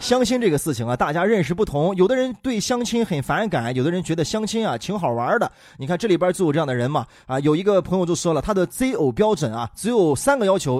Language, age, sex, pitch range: Chinese, 30-49, male, 150-220 Hz